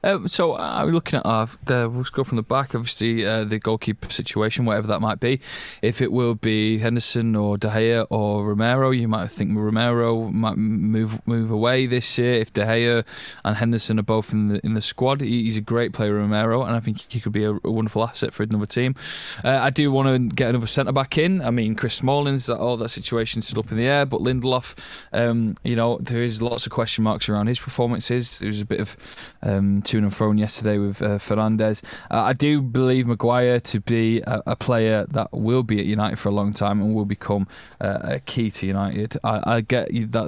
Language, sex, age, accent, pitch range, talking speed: English, male, 20-39, British, 105-120 Hz, 225 wpm